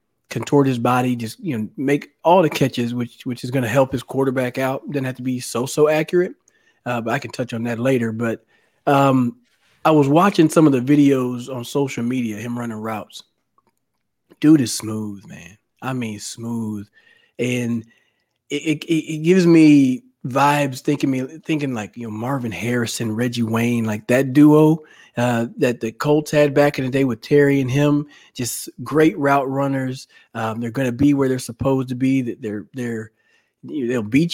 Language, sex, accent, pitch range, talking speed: English, male, American, 115-145 Hz, 190 wpm